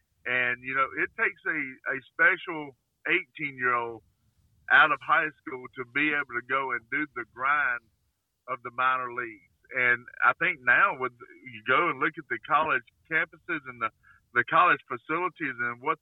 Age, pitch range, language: 50-69, 120-170 Hz, English